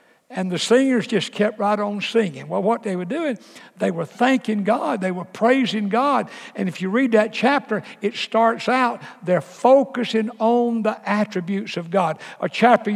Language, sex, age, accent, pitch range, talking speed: English, male, 60-79, American, 190-245 Hz, 180 wpm